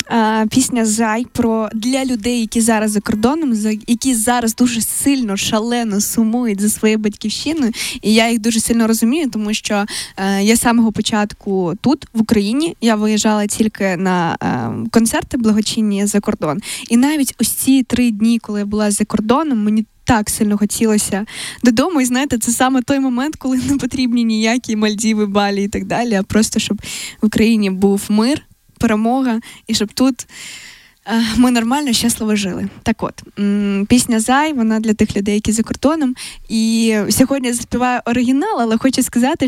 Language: Ukrainian